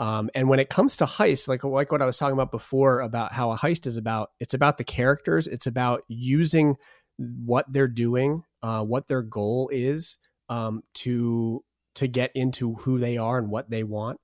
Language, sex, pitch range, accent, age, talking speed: English, male, 115-135 Hz, American, 30-49, 200 wpm